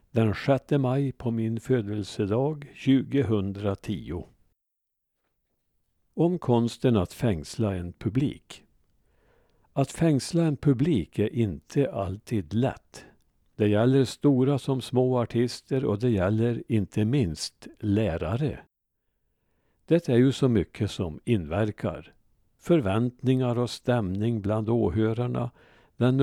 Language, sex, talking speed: Swedish, male, 105 wpm